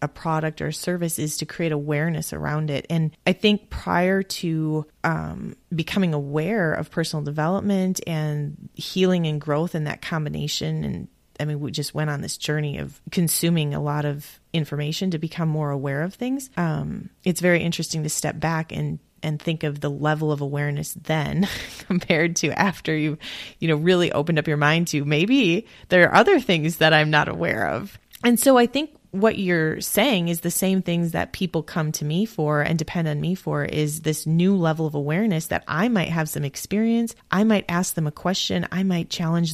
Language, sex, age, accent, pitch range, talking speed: English, female, 20-39, American, 150-180 Hz, 195 wpm